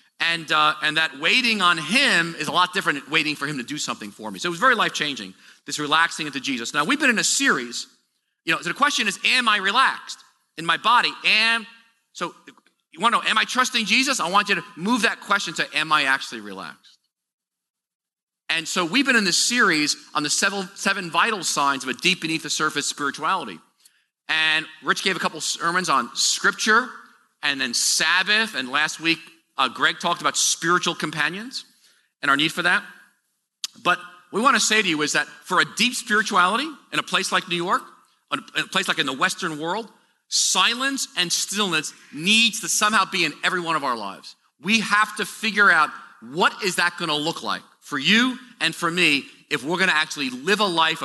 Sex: male